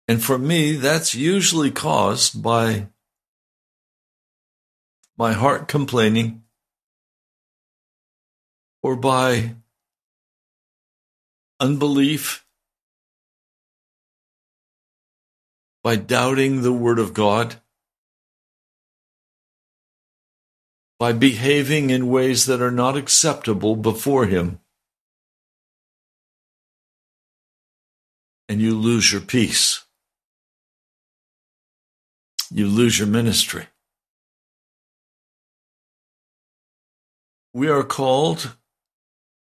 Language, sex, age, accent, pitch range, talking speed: English, male, 60-79, American, 105-135 Hz, 60 wpm